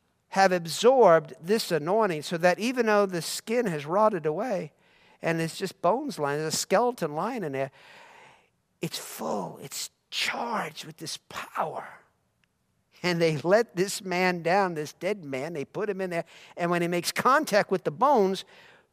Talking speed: 170 wpm